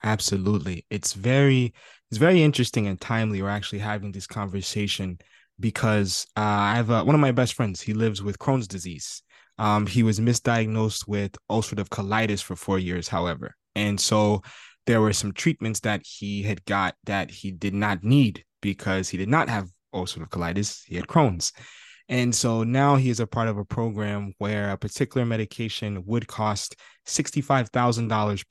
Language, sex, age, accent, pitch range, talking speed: English, male, 20-39, American, 100-125 Hz, 170 wpm